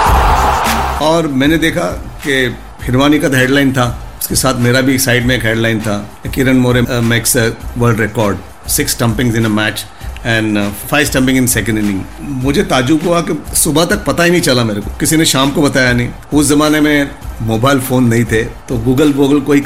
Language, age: Hindi, 50-69